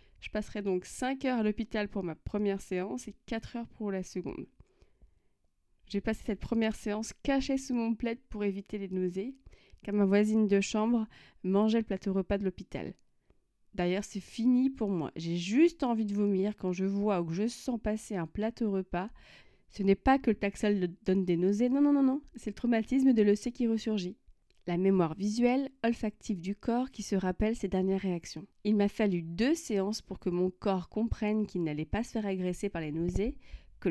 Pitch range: 180-225 Hz